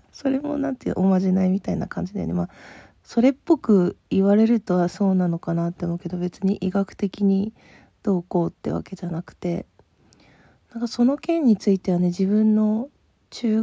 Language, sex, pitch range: Japanese, female, 180-215 Hz